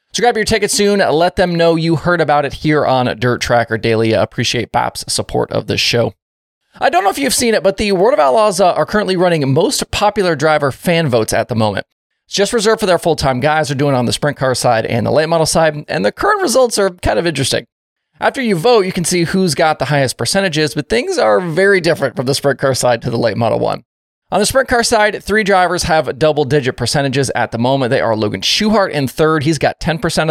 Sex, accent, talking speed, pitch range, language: male, American, 245 wpm, 125-185 Hz, English